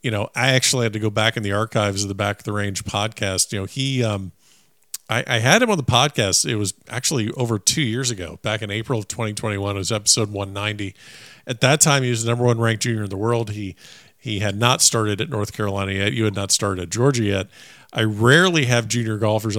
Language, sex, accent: English, male, American